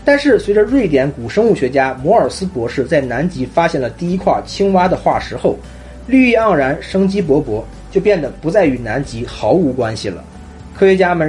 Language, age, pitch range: Chinese, 30-49, 135-200 Hz